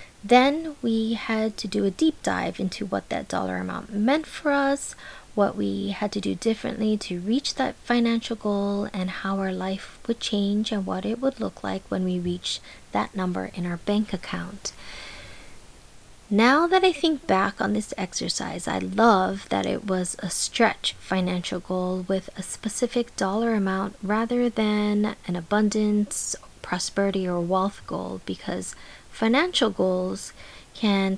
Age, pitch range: 20-39, 190-235 Hz